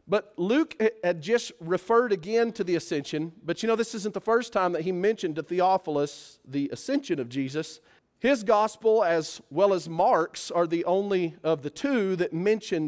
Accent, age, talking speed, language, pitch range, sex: American, 40-59, 185 wpm, English, 160-220 Hz, male